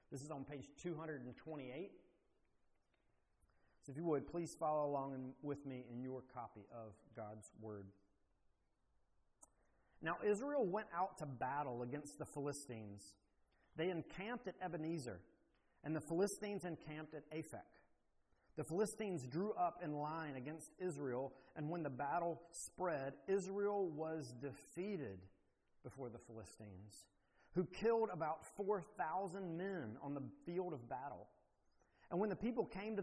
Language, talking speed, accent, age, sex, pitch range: English, 135 wpm, American, 40-59, male, 135-195 Hz